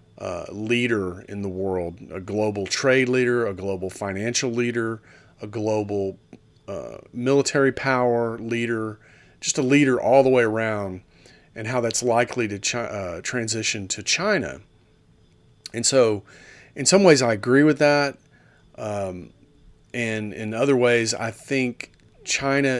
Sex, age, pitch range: male, 40-59, 110-135 Hz